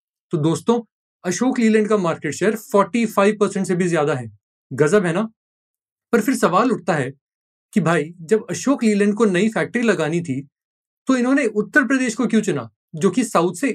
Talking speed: 190 wpm